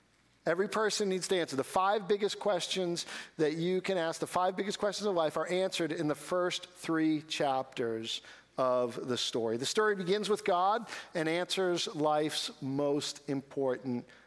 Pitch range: 160-200 Hz